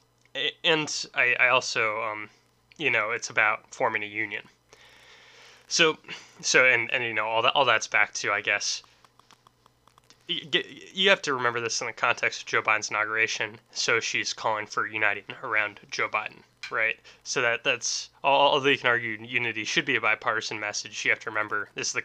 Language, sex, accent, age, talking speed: English, male, American, 20-39, 185 wpm